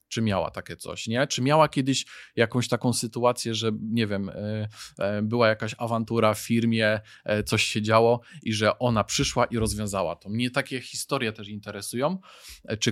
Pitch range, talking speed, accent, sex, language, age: 105-120 Hz, 165 wpm, native, male, Polish, 20-39